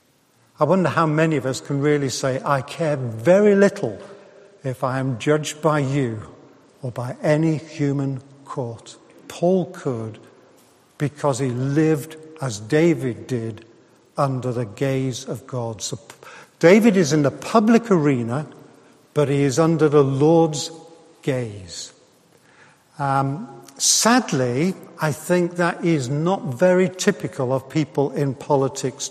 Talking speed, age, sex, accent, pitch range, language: 130 wpm, 50-69, male, British, 125-165 Hz, English